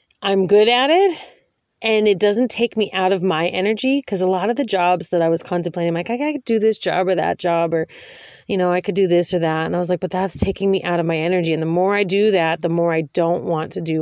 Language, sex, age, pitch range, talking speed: English, female, 30-49, 160-205 Hz, 285 wpm